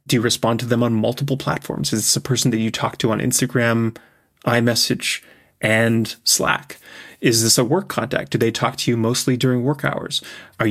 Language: English